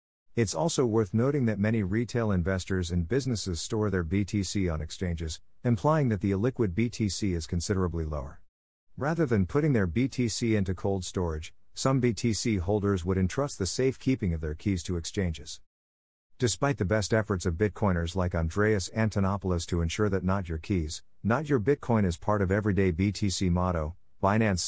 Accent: American